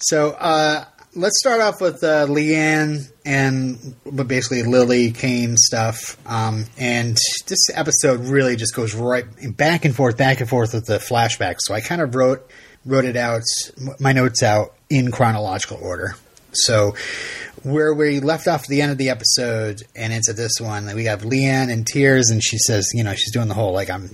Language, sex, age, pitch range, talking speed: English, male, 30-49, 110-135 Hz, 185 wpm